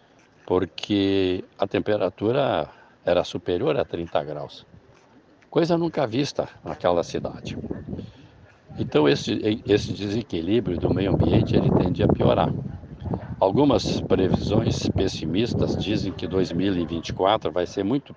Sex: male